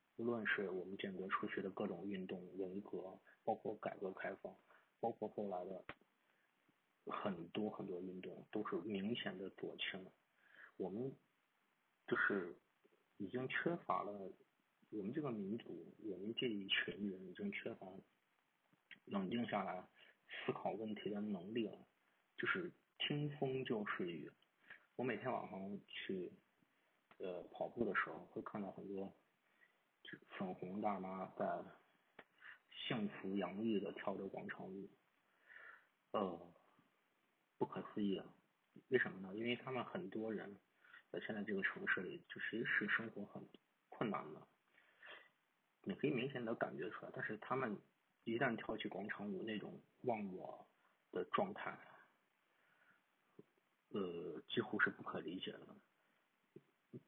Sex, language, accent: male, Chinese, native